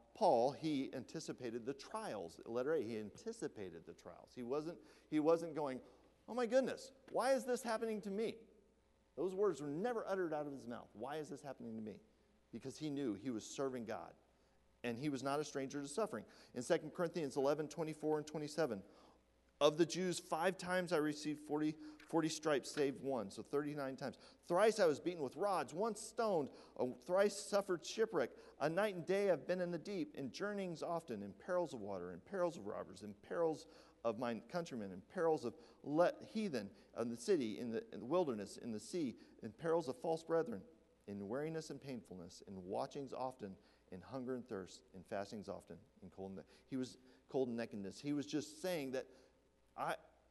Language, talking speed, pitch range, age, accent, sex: English, 195 wpm, 125-175 Hz, 40-59, American, male